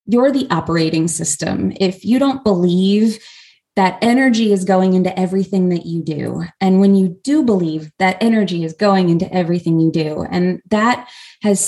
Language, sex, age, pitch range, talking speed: English, female, 20-39, 165-195 Hz, 170 wpm